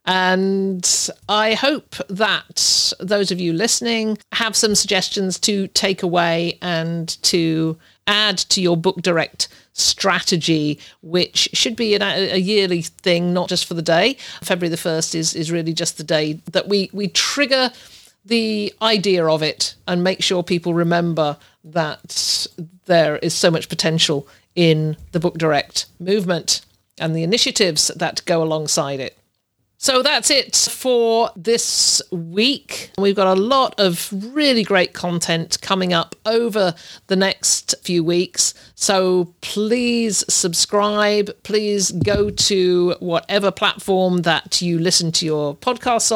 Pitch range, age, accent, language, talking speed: 165-205 Hz, 50-69, British, English, 140 wpm